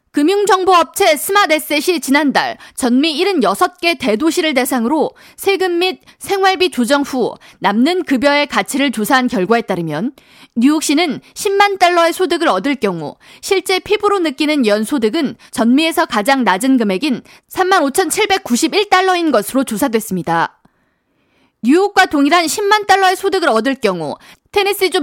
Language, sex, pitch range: Korean, female, 240-355 Hz